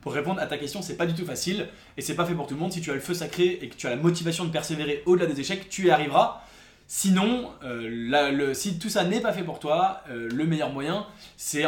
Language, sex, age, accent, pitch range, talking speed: English, male, 20-39, French, 140-180 Hz, 275 wpm